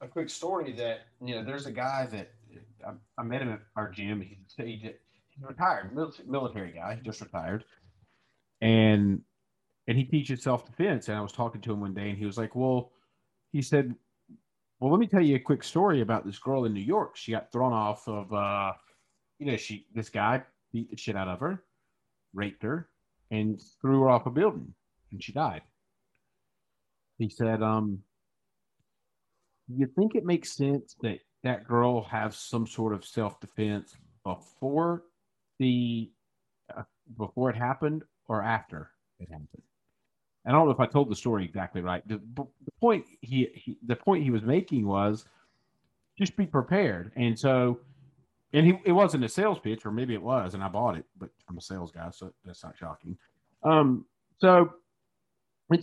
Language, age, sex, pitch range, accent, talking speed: English, 30-49, male, 105-140 Hz, American, 185 wpm